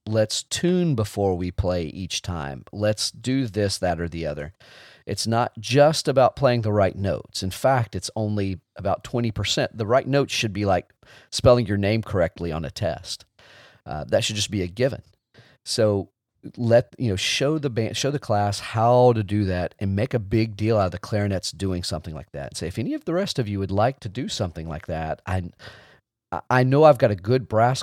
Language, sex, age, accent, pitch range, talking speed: English, male, 40-59, American, 100-125 Hz, 215 wpm